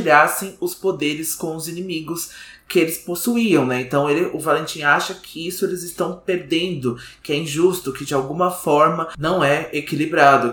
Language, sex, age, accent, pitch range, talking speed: Portuguese, male, 20-39, Brazilian, 135-170 Hz, 170 wpm